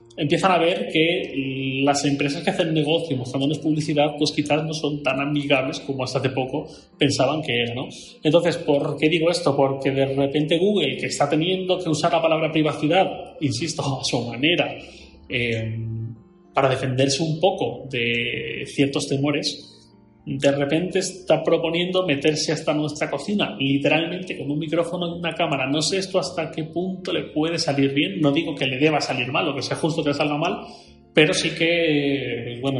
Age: 30-49